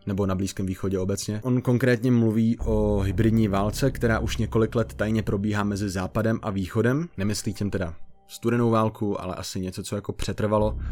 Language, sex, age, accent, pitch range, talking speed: Czech, male, 20-39, native, 100-115 Hz, 175 wpm